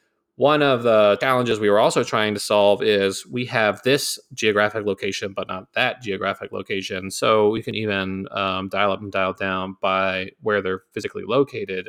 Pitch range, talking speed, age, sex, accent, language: 95-115 Hz, 180 wpm, 30-49, male, American, English